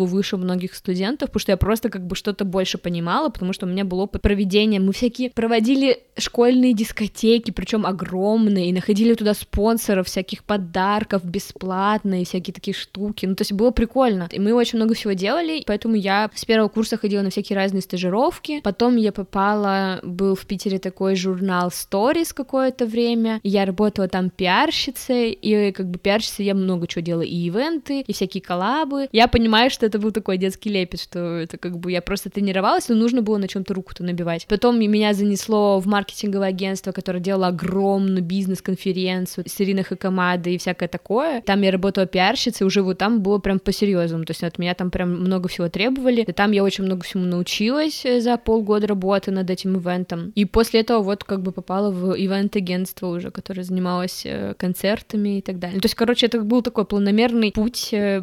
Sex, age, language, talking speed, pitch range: female, 20-39, Russian, 185 wpm, 185-225 Hz